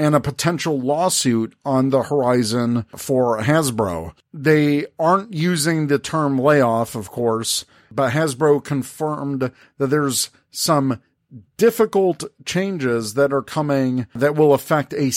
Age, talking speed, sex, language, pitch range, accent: 50-69, 125 wpm, male, English, 125-150 Hz, American